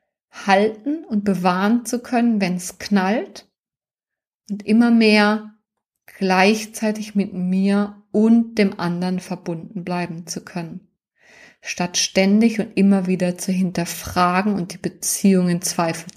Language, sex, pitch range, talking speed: German, female, 175-210 Hz, 125 wpm